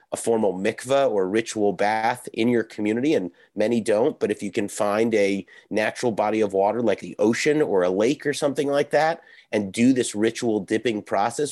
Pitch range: 110-135 Hz